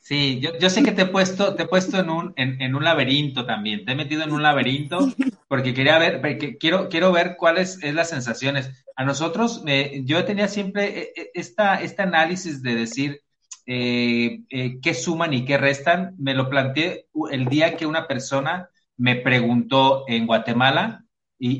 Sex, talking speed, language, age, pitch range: male, 185 wpm, Spanish, 40-59, 130-170 Hz